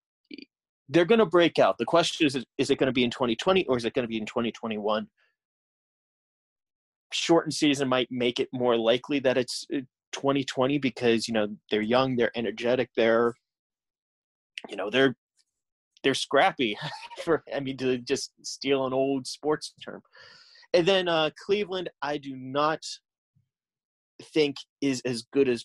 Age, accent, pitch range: 30-49, American, 120-145 Hz